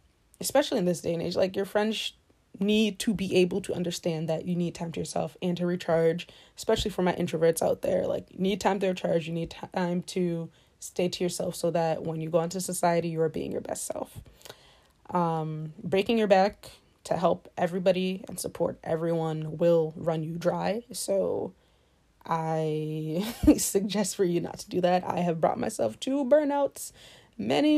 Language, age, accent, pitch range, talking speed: English, 20-39, American, 165-195 Hz, 190 wpm